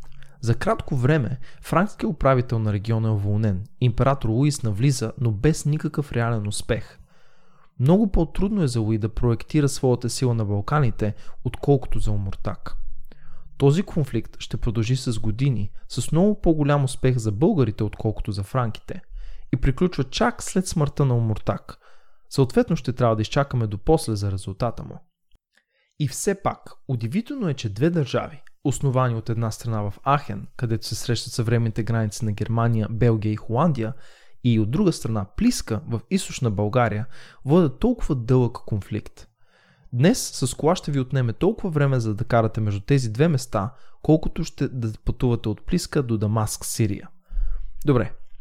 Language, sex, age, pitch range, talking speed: English, male, 20-39, 110-150 Hz, 155 wpm